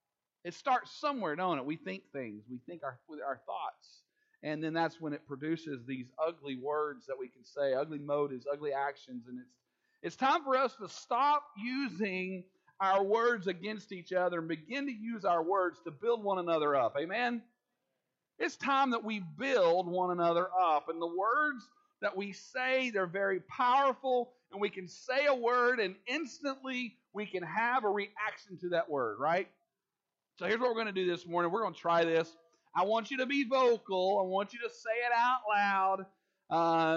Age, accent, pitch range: 40-59, American, 165-255 Hz